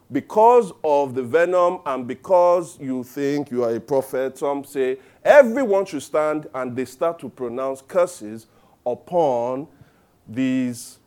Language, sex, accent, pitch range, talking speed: English, male, Nigerian, 120-155 Hz, 135 wpm